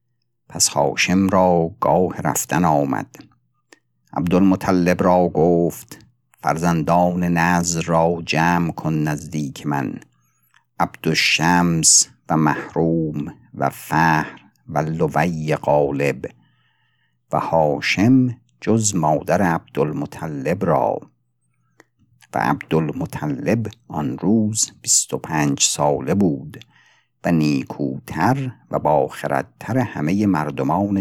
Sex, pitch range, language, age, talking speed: male, 80-105 Hz, Persian, 50-69, 85 wpm